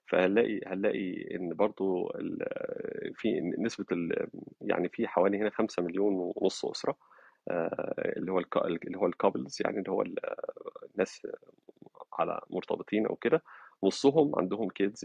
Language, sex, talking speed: Arabic, male, 120 wpm